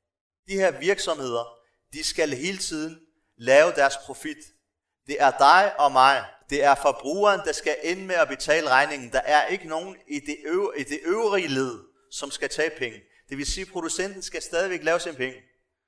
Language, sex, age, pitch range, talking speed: Danish, male, 30-49, 130-175 Hz, 180 wpm